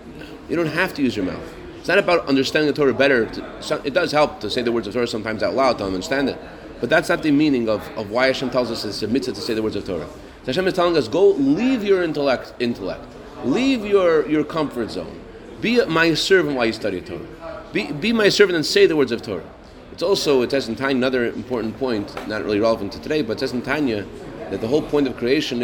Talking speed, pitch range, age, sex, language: 245 wpm, 125-170 Hz, 30-49, male, English